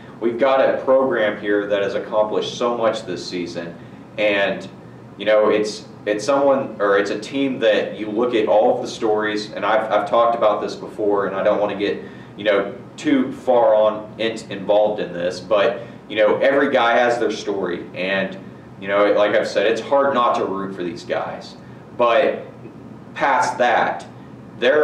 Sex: male